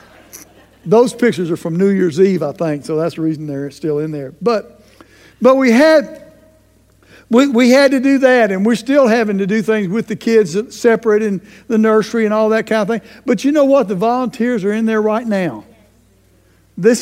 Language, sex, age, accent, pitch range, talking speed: English, male, 60-79, American, 175-240 Hz, 210 wpm